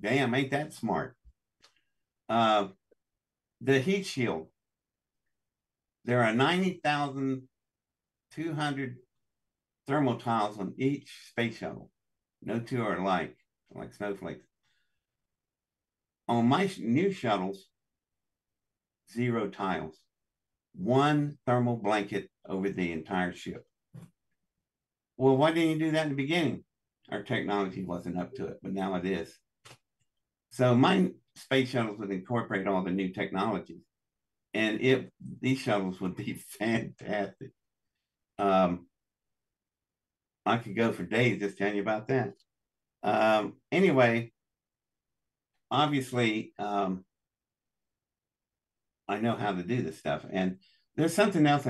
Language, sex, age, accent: English, male, 60-79, American